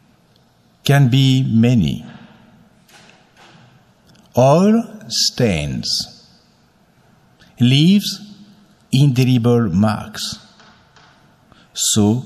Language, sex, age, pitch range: English, male, 60-79, 105-170 Hz